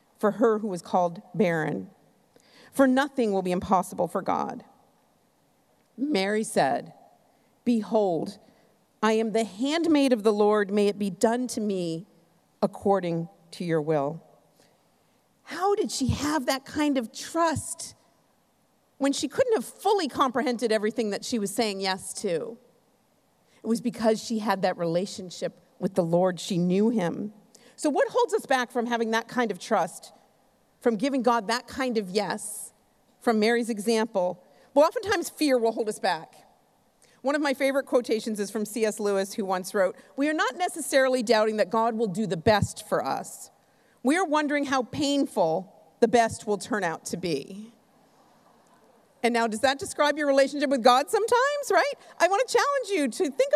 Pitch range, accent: 205-280 Hz, American